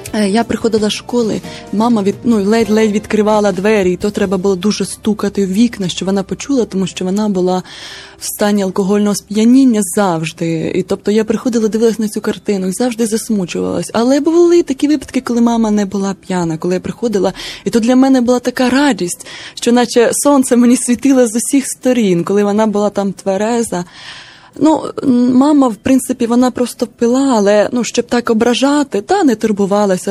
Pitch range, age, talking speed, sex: 195-235 Hz, 20-39, 175 wpm, female